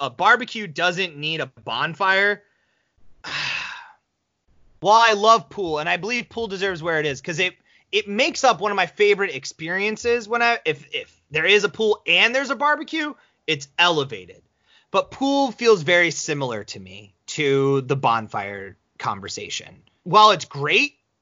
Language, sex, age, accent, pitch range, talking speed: English, male, 30-49, American, 145-220 Hz, 160 wpm